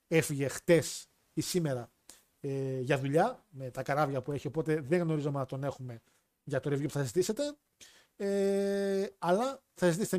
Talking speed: 165 wpm